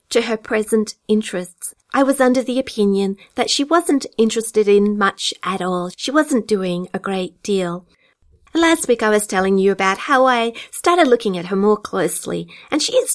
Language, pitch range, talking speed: English, 185-230 Hz, 185 wpm